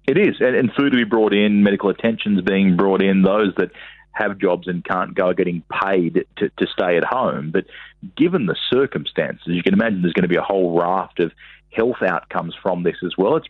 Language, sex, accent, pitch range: English, male, Australian, 85-95 Hz